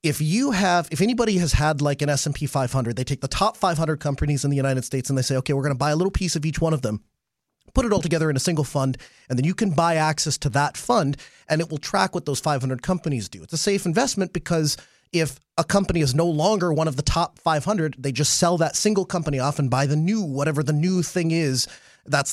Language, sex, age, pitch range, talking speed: English, male, 30-49, 140-180 Hz, 260 wpm